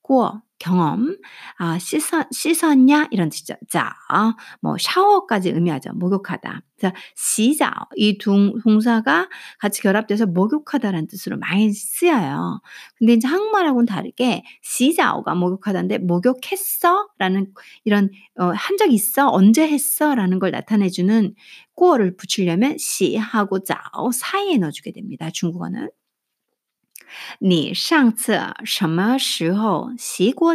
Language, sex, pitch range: Korean, female, 185-270 Hz